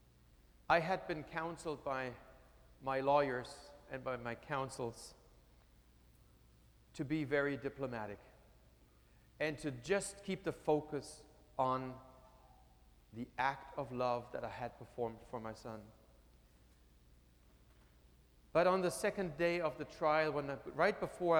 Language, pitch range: English, 115-155 Hz